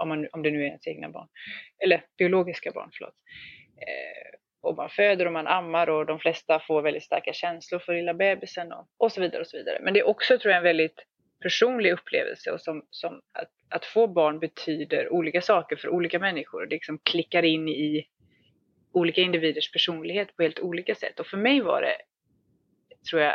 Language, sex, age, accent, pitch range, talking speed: Swedish, female, 30-49, native, 160-195 Hz, 205 wpm